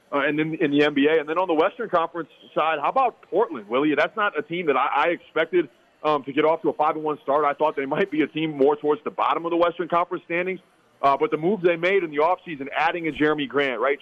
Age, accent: 30-49, American